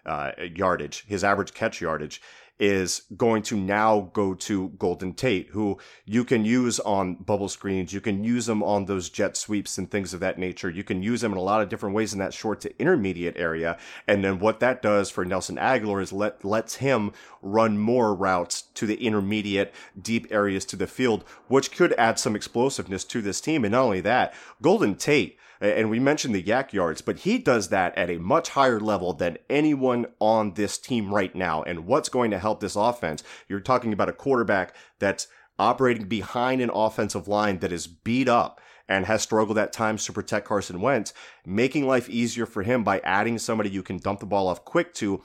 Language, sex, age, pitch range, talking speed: English, male, 30-49, 95-115 Hz, 205 wpm